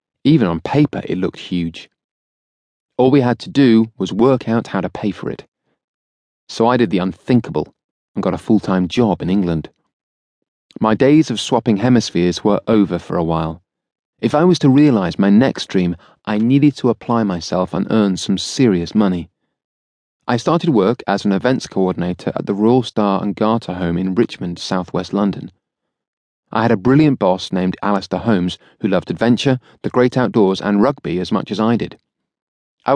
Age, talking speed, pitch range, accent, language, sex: 30-49, 180 wpm, 90-125 Hz, British, English, male